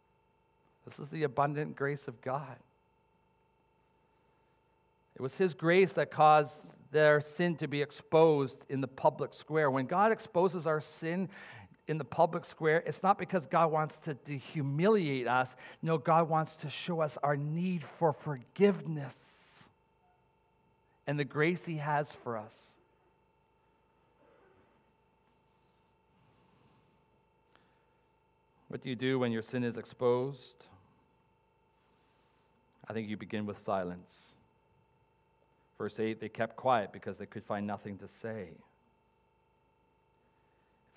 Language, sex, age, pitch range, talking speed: English, male, 40-59, 120-155 Hz, 125 wpm